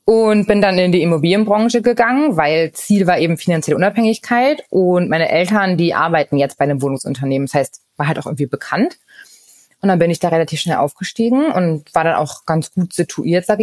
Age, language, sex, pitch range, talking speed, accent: 20-39, German, female, 160-220 Hz, 200 wpm, German